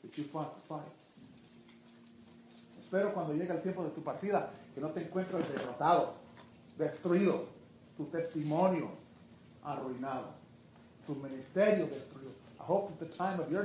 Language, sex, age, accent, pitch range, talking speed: Spanish, male, 40-59, American, 150-195 Hz, 65 wpm